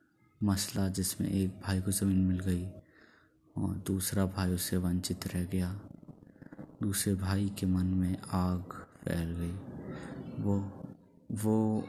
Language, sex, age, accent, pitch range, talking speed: Hindi, male, 20-39, native, 95-100 Hz, 125 wpm